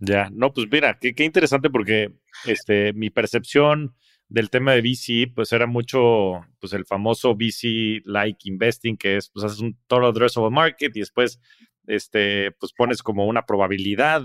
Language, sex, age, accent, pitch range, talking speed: Spanish, male, 30-49, Mexican, 100-125 Hz, 175 wpm